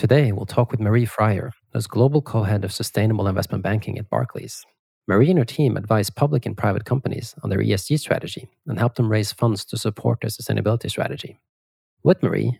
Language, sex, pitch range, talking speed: English, male, 105-125 Hz, 190 wpm